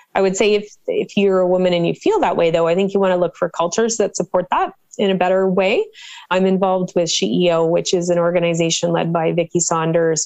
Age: 30-49